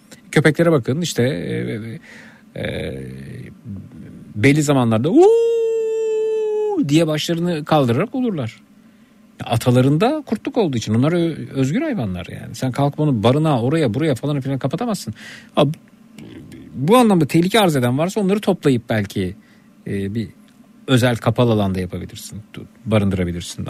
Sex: male